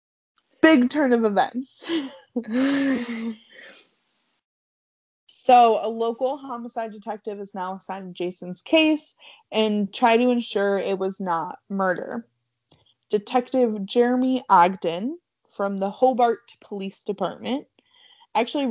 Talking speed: 100 wpm